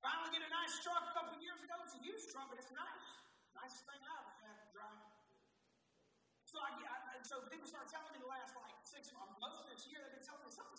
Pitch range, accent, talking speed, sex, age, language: 205-340 Hz, American, 260 wpm, male, 30-49, English